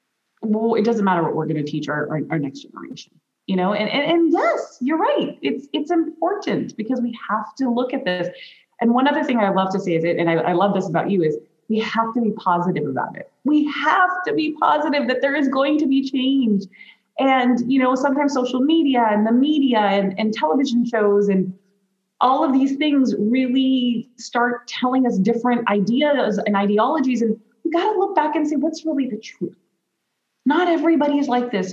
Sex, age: female, 20-39